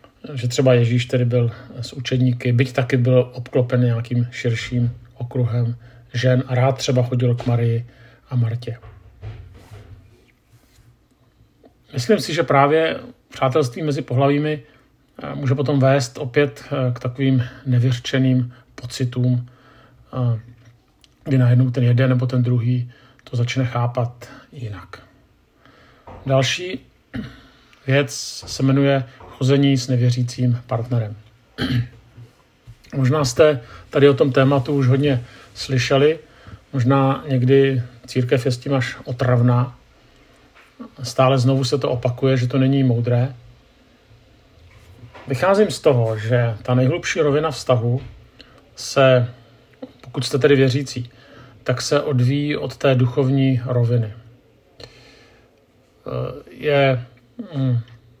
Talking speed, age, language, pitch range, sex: 105 wpm, 50-69, Czech, 120-135 Hz, male